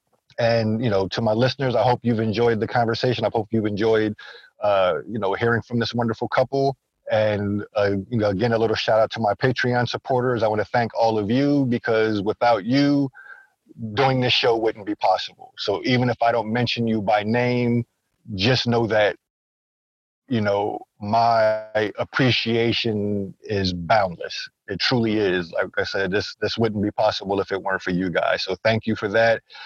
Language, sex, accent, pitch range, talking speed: English, male, American, 105-125 Hz, 185 wpm